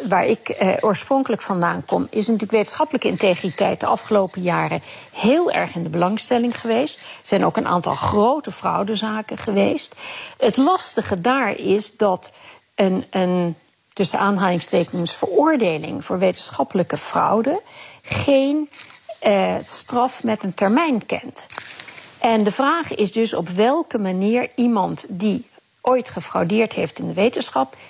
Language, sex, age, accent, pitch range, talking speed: Dutch, female, 50-69, Dutch, 200-270 Hz, 135 wpm